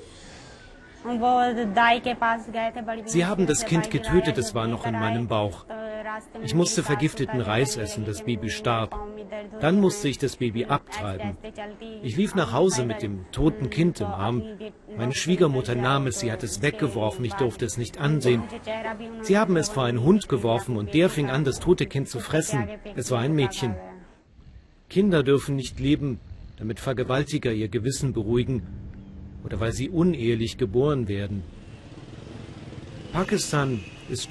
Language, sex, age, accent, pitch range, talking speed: German, male, 40-59, German, 115-165 Hz, 150 wpm